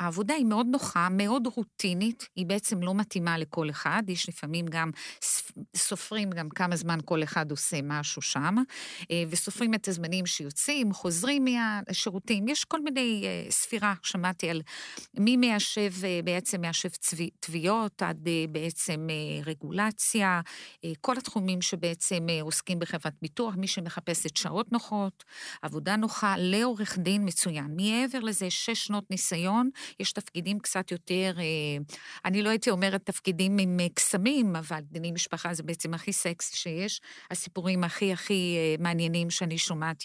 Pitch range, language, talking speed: 170-220 Hz, Hebrew, 140 wpm